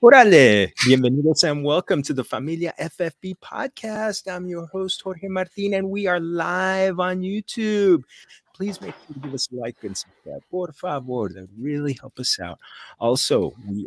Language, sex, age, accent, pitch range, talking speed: English, male, 30-49, American, 110-145 Hz, 175 wpm